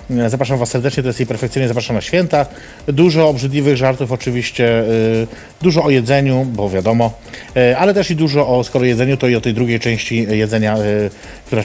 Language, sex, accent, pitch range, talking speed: Polish, male, native, 115-140 Hz, 175 wpm